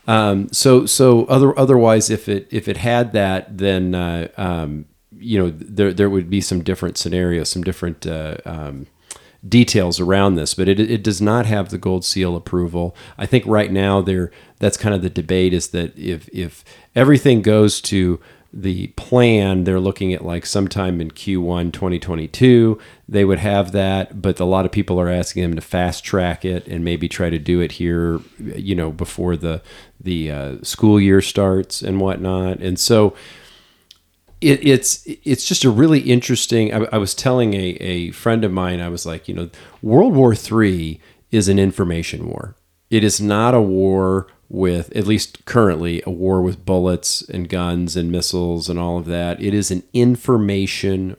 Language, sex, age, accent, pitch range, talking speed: English, male, 40-59, American, 90-105 Hz, 185 wpm